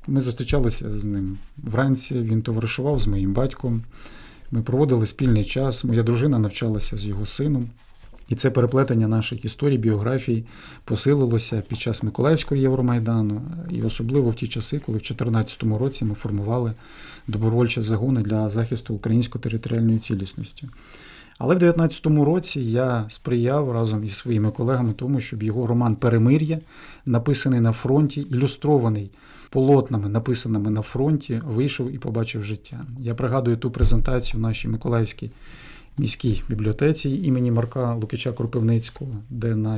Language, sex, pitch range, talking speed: Ukrainian, male, 110-135 Hz, 135 wpm